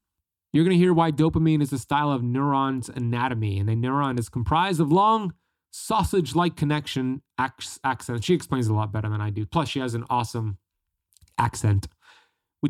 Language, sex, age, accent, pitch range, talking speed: English, male, 20-39, American, 115-145 Hz, 180 wpm